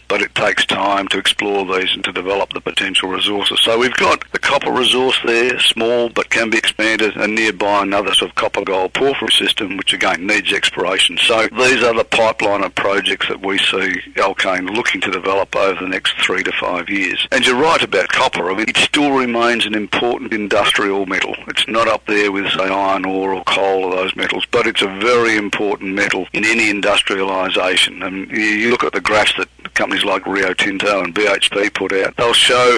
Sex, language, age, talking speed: male, English, 50-69, 205 wpm